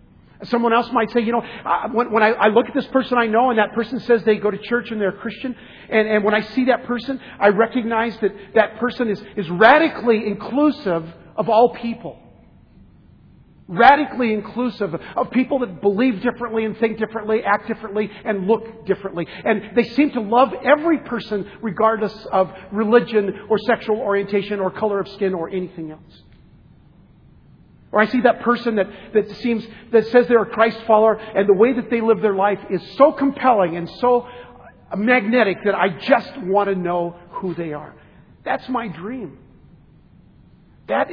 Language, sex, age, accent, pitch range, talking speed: English, male, 50-69, American, 205-245 Hz, 170 wpm